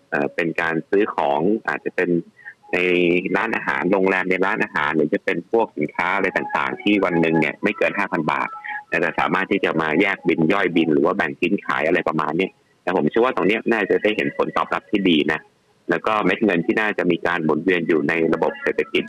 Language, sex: Thai, male